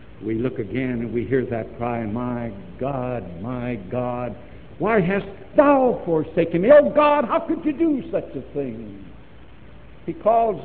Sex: male